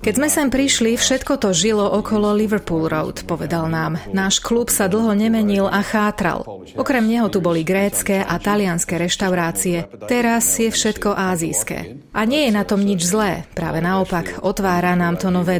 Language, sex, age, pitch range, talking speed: Slovak, female, 30-49, 175-215 Hz, 170 wpm